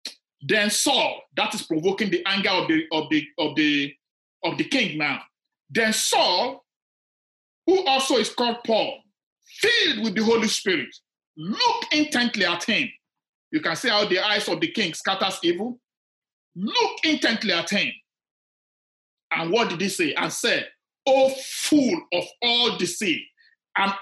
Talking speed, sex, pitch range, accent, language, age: 150 wpm, male, 200-310 Hz, Nigerian, English, 50-69